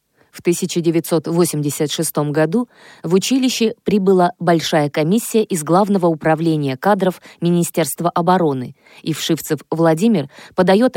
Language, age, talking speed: Russian, 20-39, 100 wpm